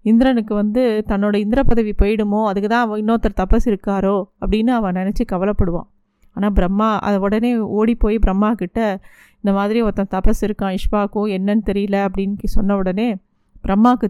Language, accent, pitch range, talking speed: Tamil, native, 200-230 Hz, 150 wpm